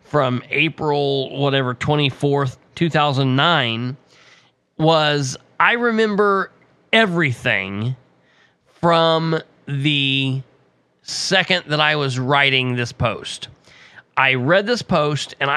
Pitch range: 130-170 Hz